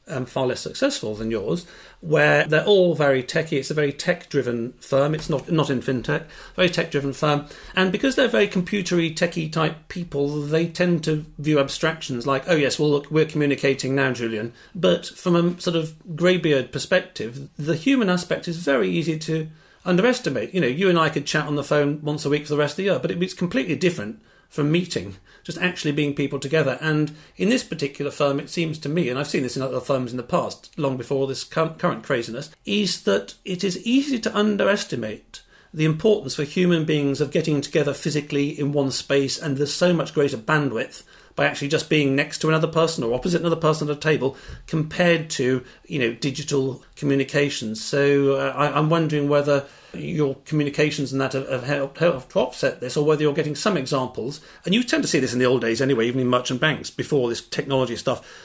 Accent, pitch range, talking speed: British, 140-170 Hz, 205 wpm